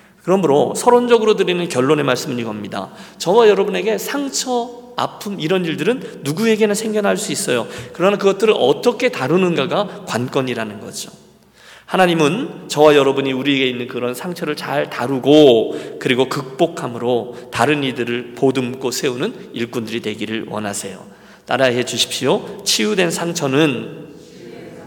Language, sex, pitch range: Korean, male, 125-195 Hz